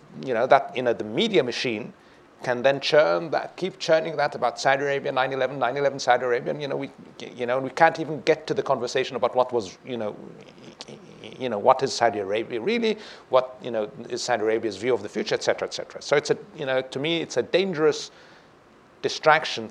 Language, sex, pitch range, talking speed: English, male, 120-155 Hz, 230 wpm